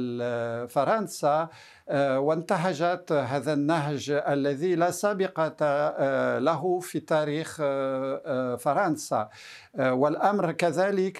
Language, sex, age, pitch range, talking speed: Arabic, male, 50-69, 140-180 Hz, 70 wpm